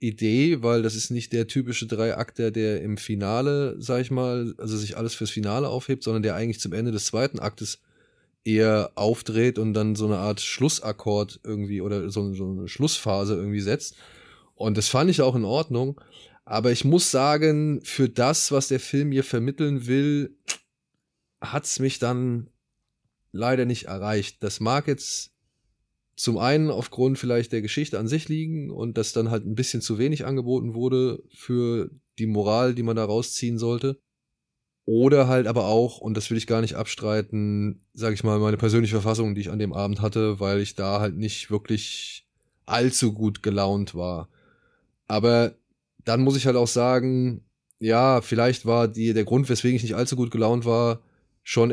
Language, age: German, 20-39